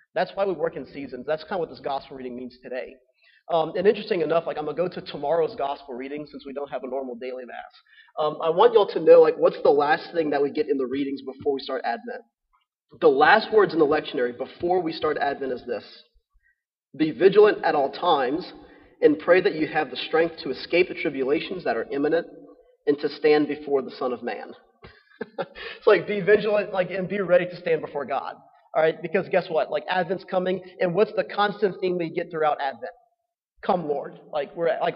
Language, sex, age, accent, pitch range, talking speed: English, male, 30-49, American, 155-205 Hz, 225 wpm